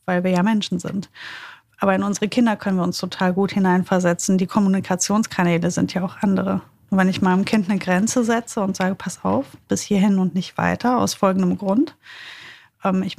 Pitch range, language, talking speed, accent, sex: 185-215 Hz, German, 185 wpm, German, female